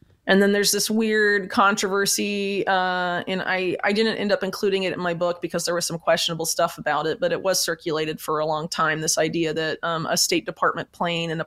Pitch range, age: 160-195 Hz, 30-49